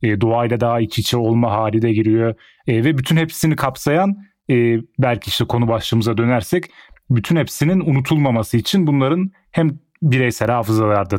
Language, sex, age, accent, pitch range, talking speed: English, male, 30-49, Turkish, 105-130 Hz, 145 wpm